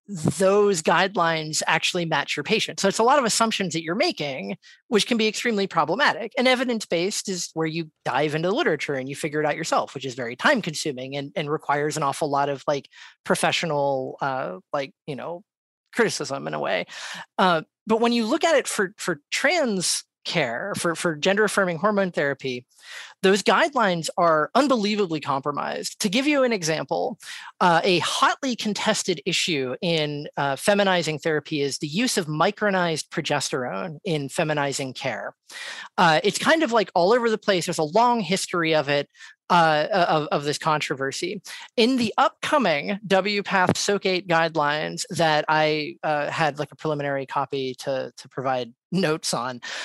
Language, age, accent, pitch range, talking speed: English, 30-49, American, 150-205 Hz, 165 wpm